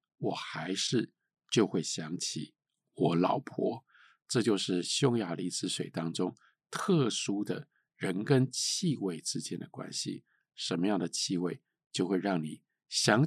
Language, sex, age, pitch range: Chinese, male, 50-69, 115-160 Hz